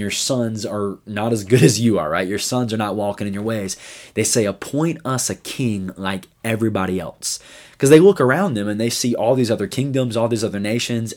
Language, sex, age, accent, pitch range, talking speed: English, male, 20-39, American, 100-120 Hz, 230 wpm